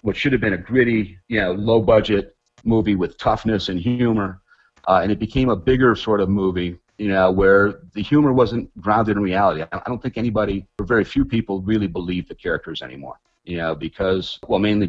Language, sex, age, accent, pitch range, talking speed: Swedish, male, 40-59, American, 90-110 Hz, 200 wpm